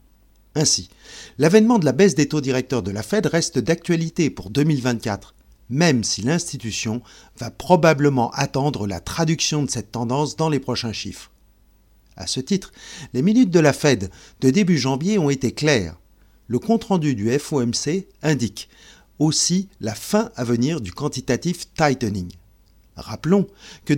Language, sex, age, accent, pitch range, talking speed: French, male, 50-69, French, 110-165 Hz, 150 wpm